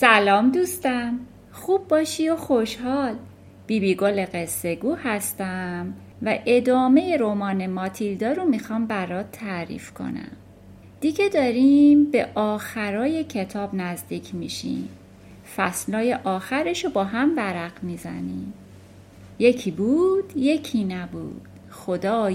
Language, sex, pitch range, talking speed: Persian, female, 185-265 Hz, 100 wpm